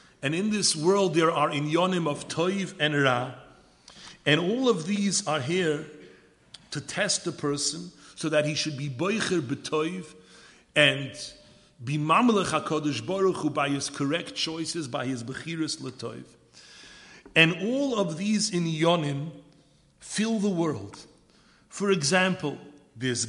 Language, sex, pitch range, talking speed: English, male, 135-175 Hz, 140 wpm